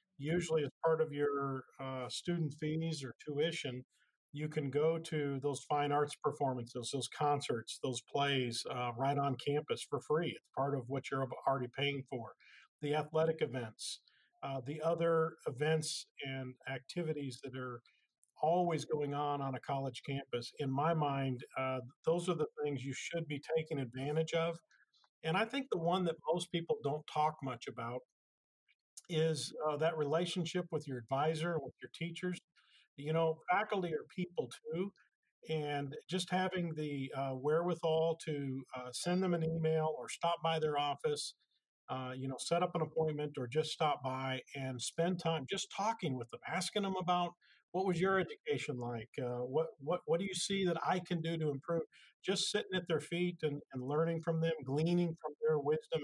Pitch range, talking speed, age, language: 135-165 Hz, 180 wpm, 50-69, English